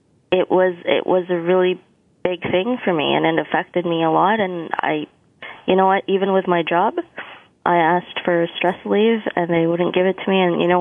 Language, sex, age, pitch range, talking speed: English, female, 20-39, 160-185 Hz, 220 wpm